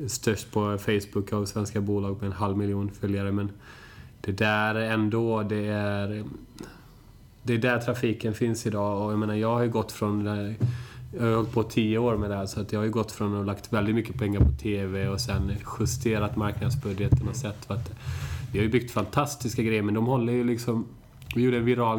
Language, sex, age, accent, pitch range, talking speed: Swedish, male, 20-39, native, 100-120 Hz, 200 wpm